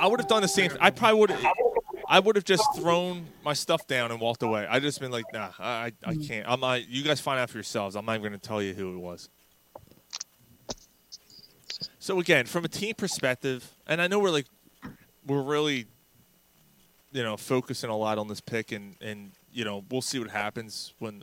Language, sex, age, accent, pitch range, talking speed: English, male, 20-39, American, 115-150 Hz, 230 wpm